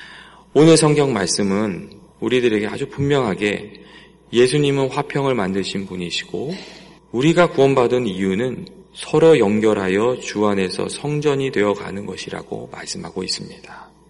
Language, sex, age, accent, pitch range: Korean, male, 40-59, native, 105-155 Hz